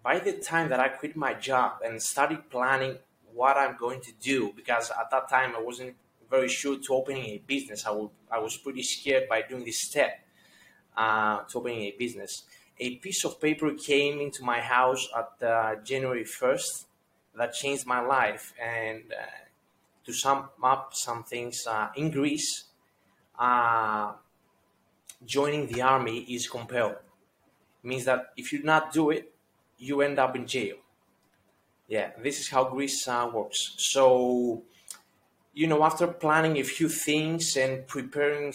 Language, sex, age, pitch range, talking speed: English, male, 20-39, 120-140 Hz, 165 wpm